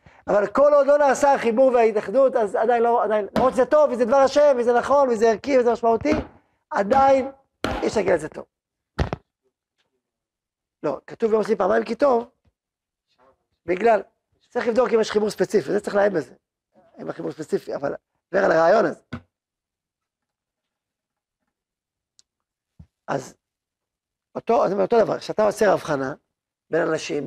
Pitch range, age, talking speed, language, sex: 190-250 Hz, 40-59, 130 wpm, Hebrew, male